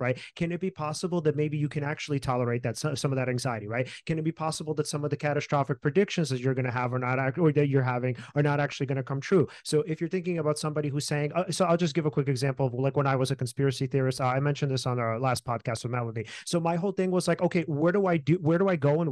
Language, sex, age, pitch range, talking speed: English, male, 30-49, 130-160 Hz, 290 wpm